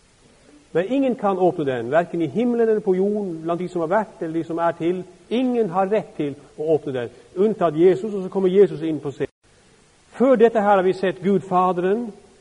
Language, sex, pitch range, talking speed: Danish, male, 155-220 Hz, 215 wpm